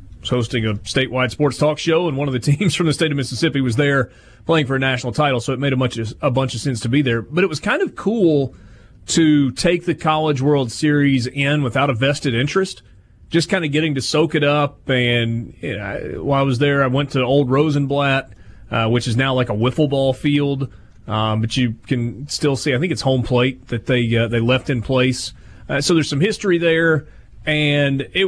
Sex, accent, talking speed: male, American, 220 wpm